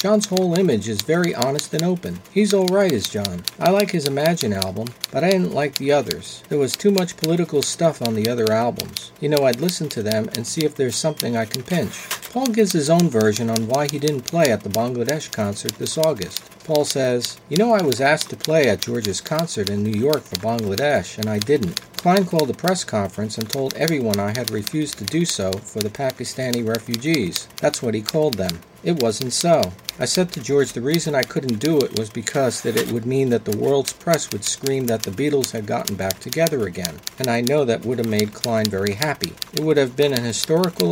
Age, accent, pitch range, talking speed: 40-59, American, 110-155 Hz, 230 wpm